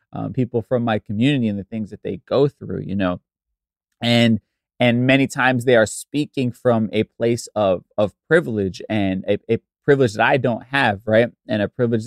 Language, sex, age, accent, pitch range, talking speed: English, male, 20-39, American, 105-120 Hz, 195 wpm